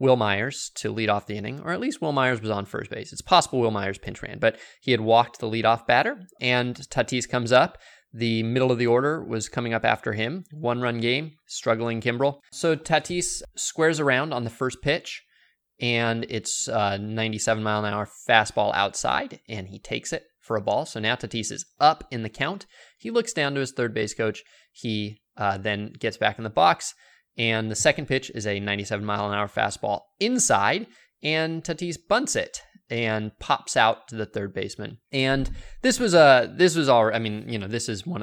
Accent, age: American, 20-39